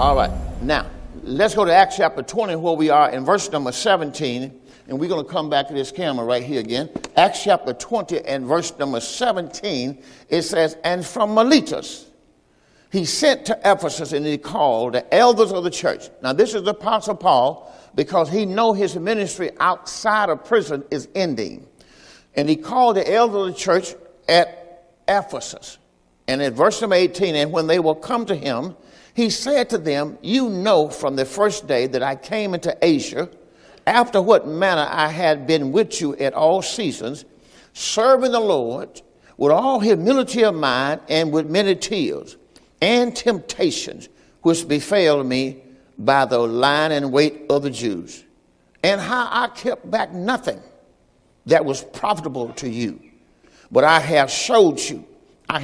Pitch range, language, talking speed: 140-210 Hz, English, 170 wpm